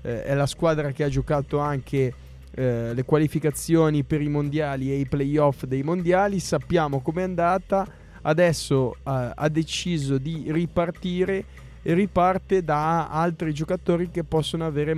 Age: 20-39